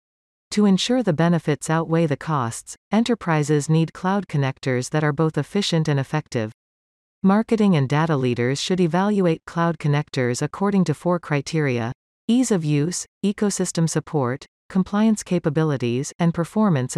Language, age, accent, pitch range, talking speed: English, 40-59, American, 135-180 Hz, 135 wpm